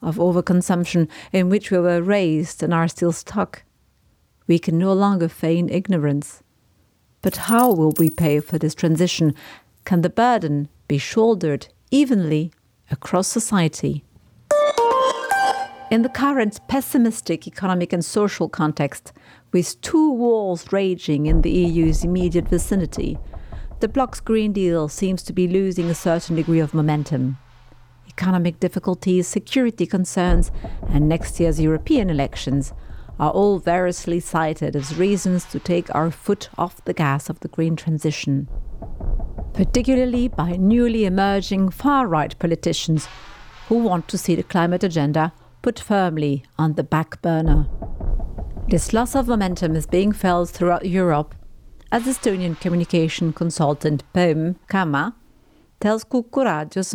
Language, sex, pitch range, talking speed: English, female, 155-200 Hz, 130 wpm